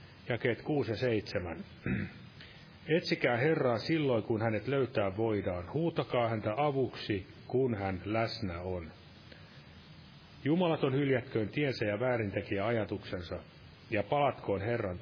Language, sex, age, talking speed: Finnish, male, 30-49, 110 wpm